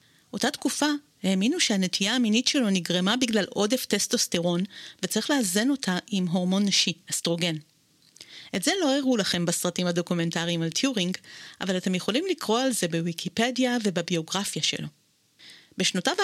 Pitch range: 180-240 Hz